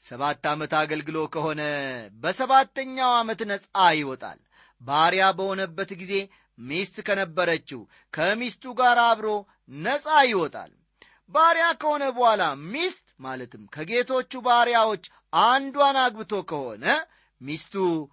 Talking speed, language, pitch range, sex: 95 wpm, Amharic, 155-240 Hz, male